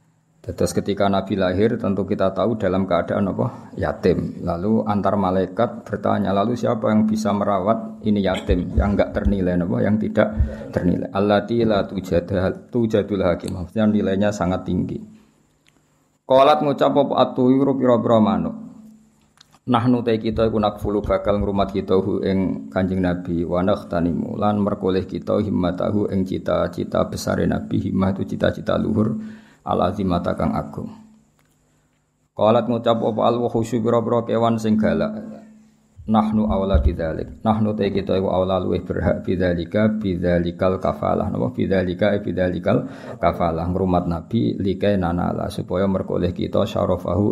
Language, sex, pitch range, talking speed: Malay, male, 90-115 Hz, 130 wpm